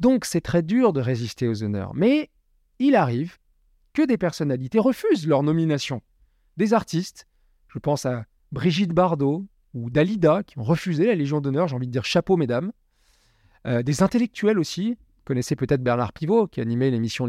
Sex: male